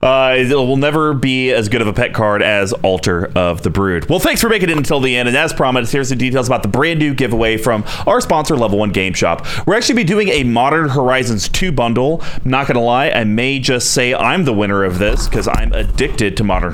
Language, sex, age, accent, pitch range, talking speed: English, male, 30-49, American, 110-150 Hz, 245 wpm